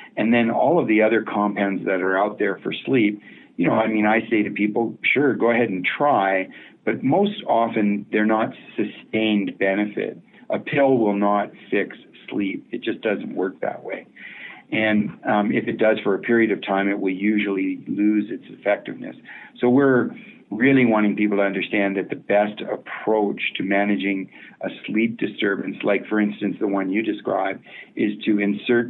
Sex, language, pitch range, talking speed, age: male, English, 100-110 Hz, 180 wpm, 50-69